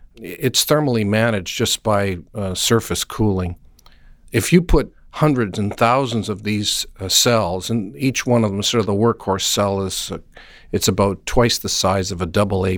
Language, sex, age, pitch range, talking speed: English, male, 50-69, 100-125 Hz, 175 wpm